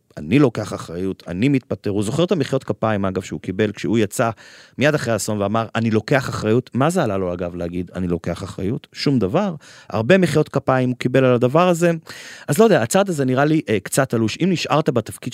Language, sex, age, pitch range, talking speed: Hebrew, male, 30-49, 105-145 Hz, 210 wpm